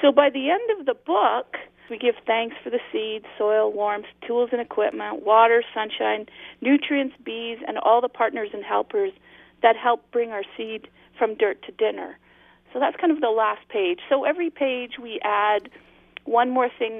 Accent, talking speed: American, 185 wpm